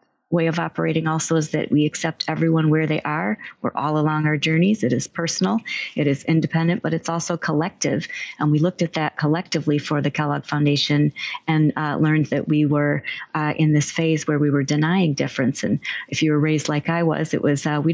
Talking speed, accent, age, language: 215 wpm, American, 30-49, English